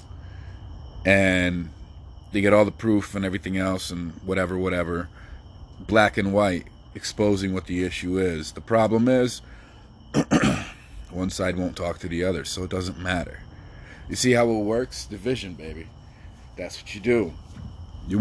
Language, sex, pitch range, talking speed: English, male, 85-105 Hz, 150 wpm